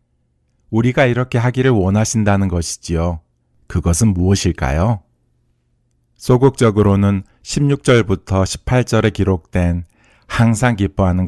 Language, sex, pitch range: Korean, male, 85-115 Hz